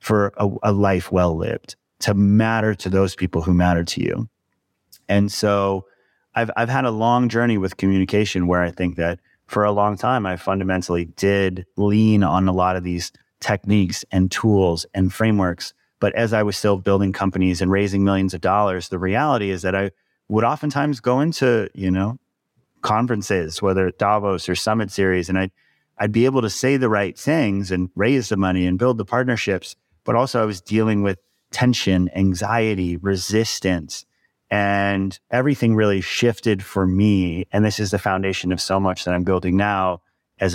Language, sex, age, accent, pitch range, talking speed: English, male, 30-49, American, 95-105 Hz, 180 wpm